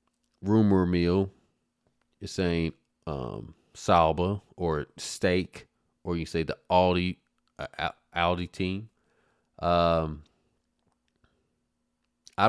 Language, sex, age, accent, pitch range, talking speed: English, male, 30-49, American, 75-85 Hz, 85 wpm